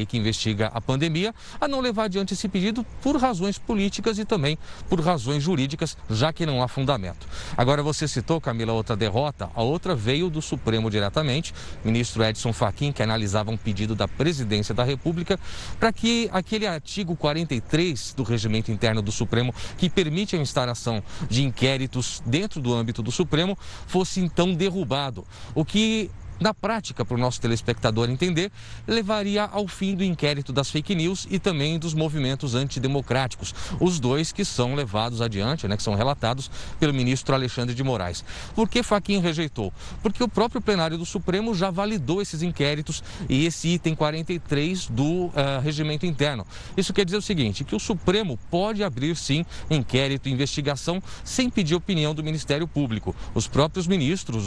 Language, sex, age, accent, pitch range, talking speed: Portuguese, male, 40-59, Brazilian, 120-180 Hz, 165 wpm